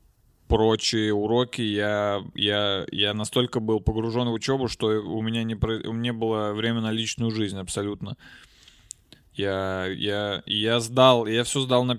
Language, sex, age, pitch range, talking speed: Russian, male, 20-39, 100-115 Hz, 135 wpm